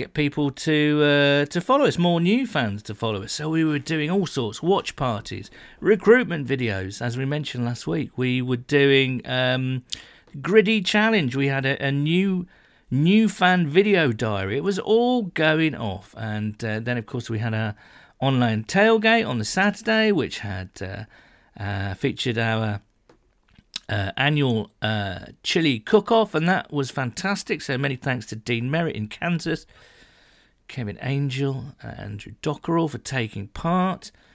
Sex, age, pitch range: male, 40-59, 115-155 Hz